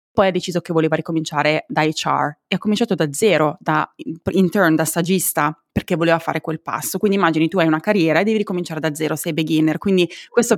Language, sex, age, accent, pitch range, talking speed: Italian, female, 20-39, native, 155-180 Hz, 210 wpm